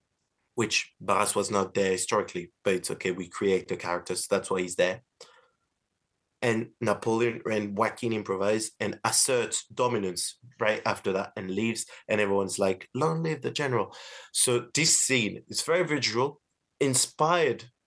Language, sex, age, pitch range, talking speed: English, male, 20-39, 100-120 Hz, 150 wpm